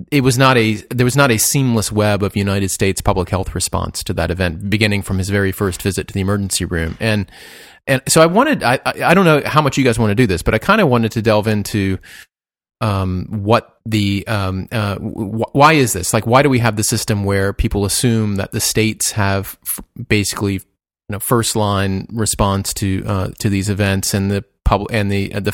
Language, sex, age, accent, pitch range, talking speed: English, male, 30-49, American, 100-120 Hz, 220 wpm